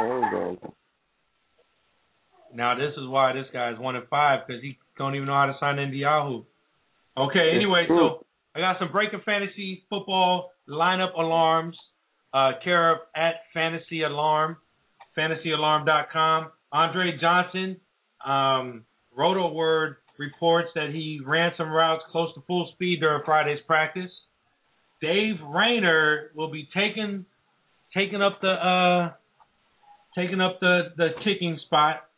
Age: 40-59